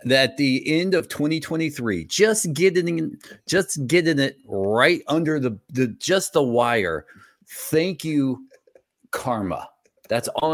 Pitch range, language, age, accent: 105-150 Hz, English, 40-59, American